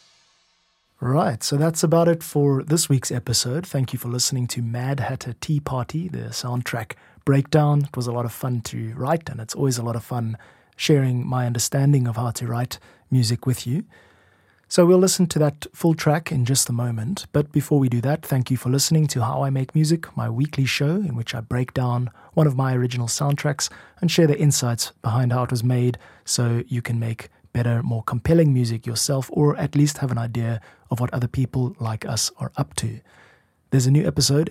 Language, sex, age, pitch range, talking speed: English, male, 20-39, 120-145 Hz, 210 wpm